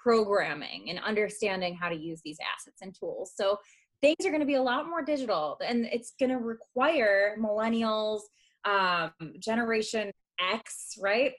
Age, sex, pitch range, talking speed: 20-39, female, 200-265 Hz, 160 wpm